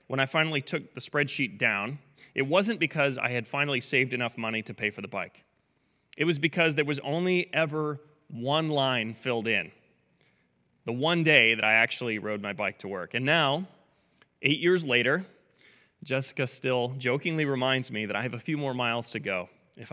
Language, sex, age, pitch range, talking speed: English, male, 30-49, 115-155 Hz, 190 wpm